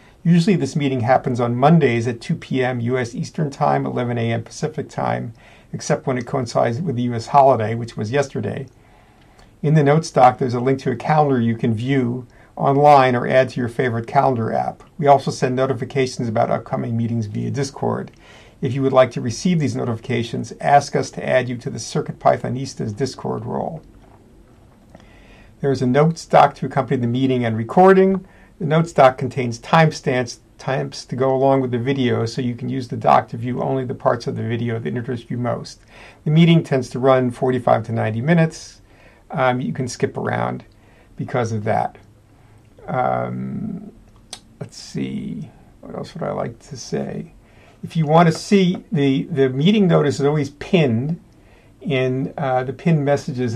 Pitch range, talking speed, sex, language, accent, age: 115-140 Hz, 180 wpm, male, English, American, 50-69